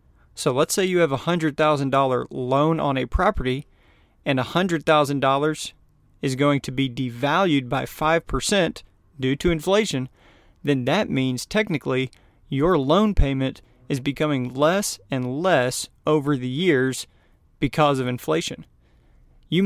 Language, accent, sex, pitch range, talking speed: English, American, male, 125-160 Hz, 130 wpm